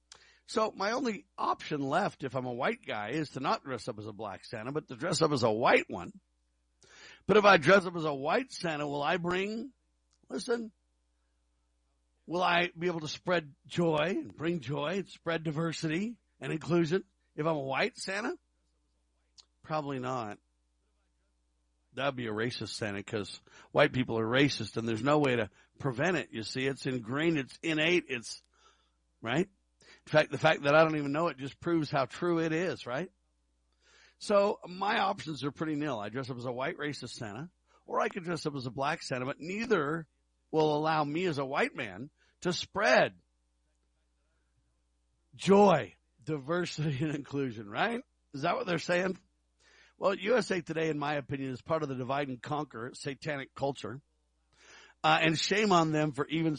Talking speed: 180 wpm